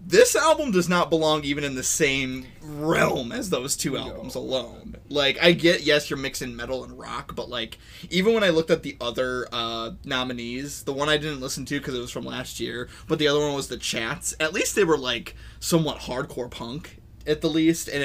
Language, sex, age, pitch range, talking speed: English, male, 20-39, 125-155 Hz, 220 wpm